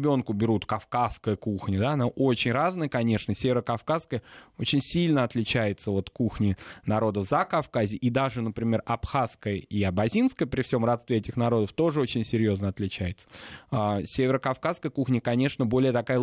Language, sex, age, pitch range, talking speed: Russian, male, 20-39, 105-130 Hz, 140 wpm